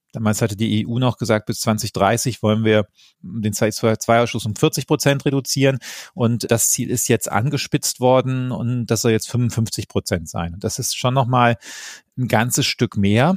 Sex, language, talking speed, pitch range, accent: male, German, 175 wpm, 110-125 Hz, German